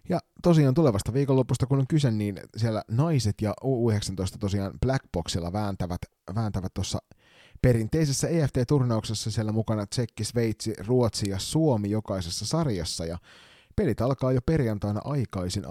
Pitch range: 95-120 Hz